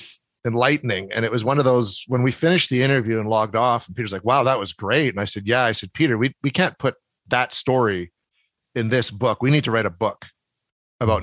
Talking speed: 240 wpm